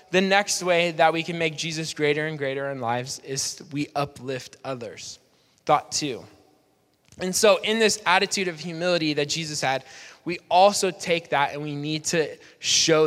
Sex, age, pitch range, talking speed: male, 10-29, 150-190 Hz, 175 wpm